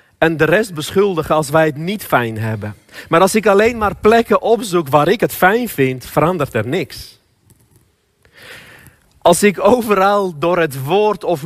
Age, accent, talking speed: 40-59, Dutch, 170 wpm